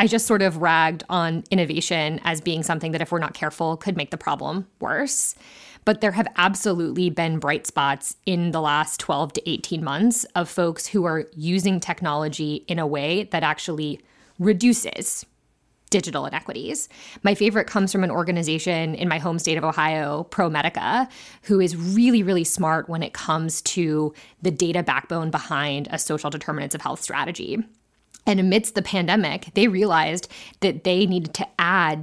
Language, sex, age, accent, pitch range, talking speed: English, female, 20-39, American, 160-200 Hz, 170 wpm